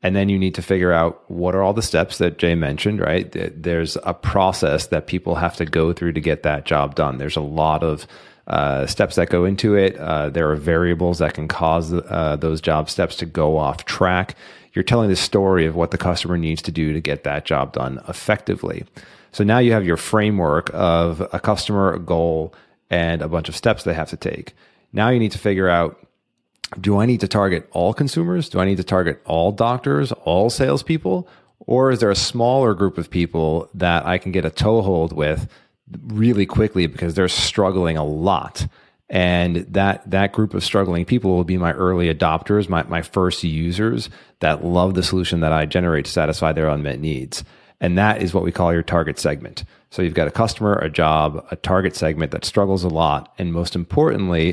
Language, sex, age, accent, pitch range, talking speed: English, male, 30-49, American, 80-95 Hz, 210 wpm